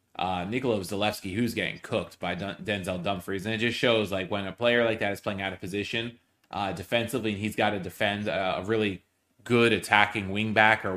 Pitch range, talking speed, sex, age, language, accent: 95-120 Hz, 210 wpm, male, 20-39, English, American